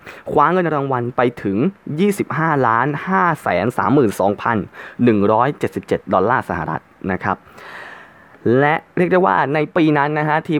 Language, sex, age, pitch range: Thai, male, 20-39, 110-150 Hz